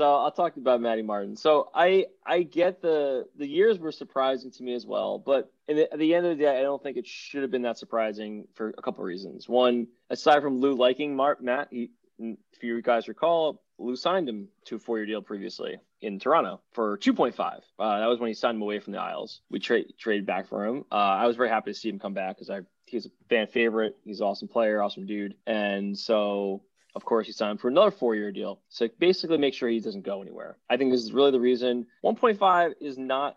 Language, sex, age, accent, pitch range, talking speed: English, male, 20-39, American, 105-135 Hz, 240 wpm